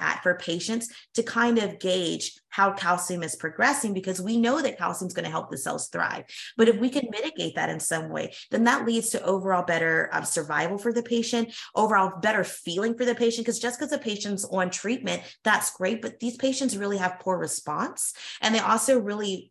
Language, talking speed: English, 210 wpm